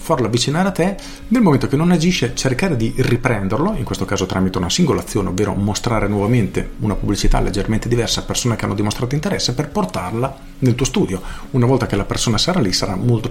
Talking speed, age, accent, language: 205 wpm, 40-59, native, Italian